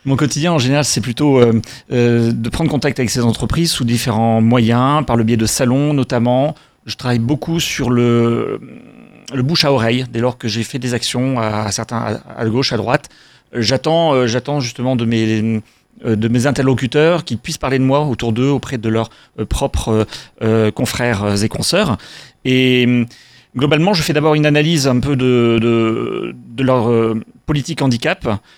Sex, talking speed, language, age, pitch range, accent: male, 180 wpm, French, 30-49, 120-150 Hz, French